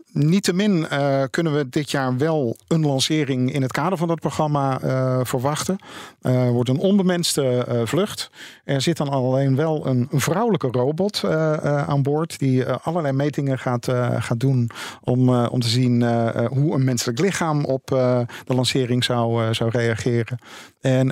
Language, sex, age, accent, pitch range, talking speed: Dutch, male, 50-69, Dutch, 125-150 Hz, 170 wpm